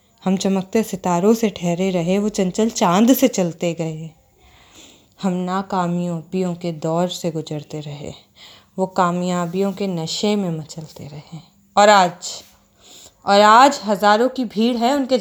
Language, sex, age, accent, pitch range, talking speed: Hindi, female, 20-39, native, 175-230 Hz, 140 wpm